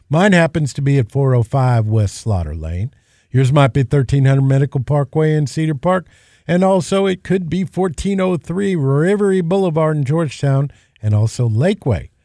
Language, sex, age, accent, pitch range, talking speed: English, male, 50-69, American, 115-150 Hz, 150 wpm